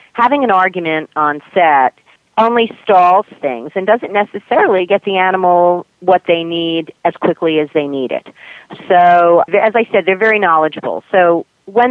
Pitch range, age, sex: 150-190 Hz, 40-59, female